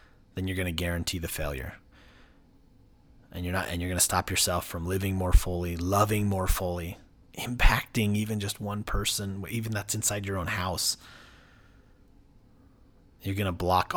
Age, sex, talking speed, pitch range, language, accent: 30-49, male, 165 wpm, 90-125 Hz, English, American